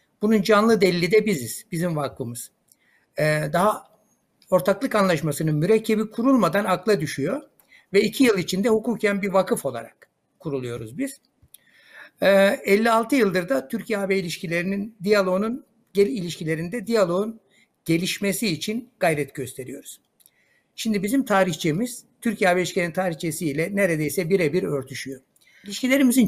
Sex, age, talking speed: male, 60-79, 110 wpm